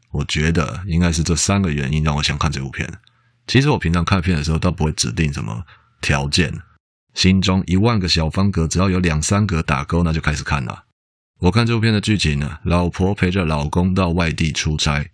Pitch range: 80-100 Hz